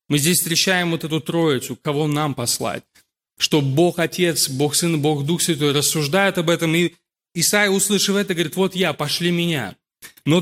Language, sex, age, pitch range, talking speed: Russian, male, 30-49, 155-180 Hz, 175 wpm